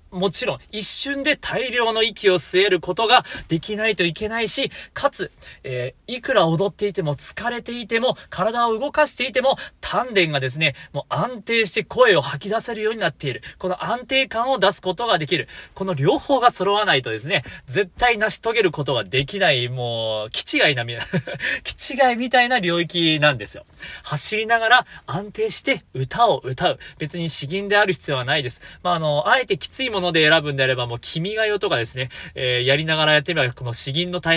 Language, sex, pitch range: Japanese, male, 140-215 Hz